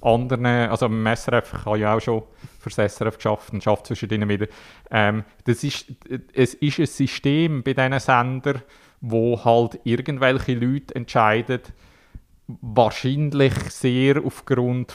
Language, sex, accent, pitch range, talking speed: German, male, Austrian, 115-135 Hz, 135 wpm